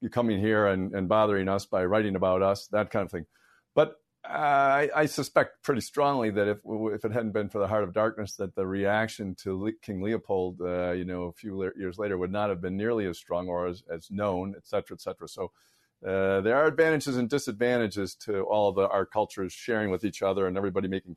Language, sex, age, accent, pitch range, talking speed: English, male, 50-69, American, 95-115 Hz, 225 wpm